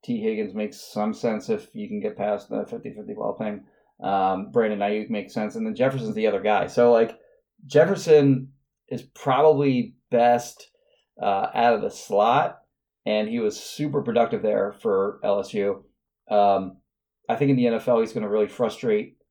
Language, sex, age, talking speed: English, male, 30-49, 170 wpm